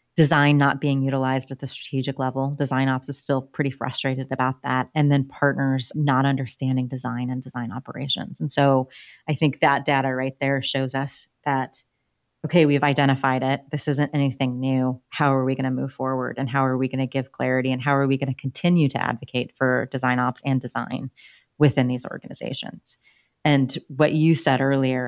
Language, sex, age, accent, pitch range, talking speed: English, female, 30-49, American, 130-145 Hz, 195 wpm